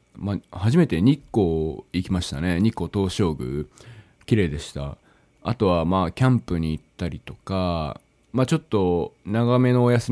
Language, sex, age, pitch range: Japanese, male, 20-39, 85-130 Hz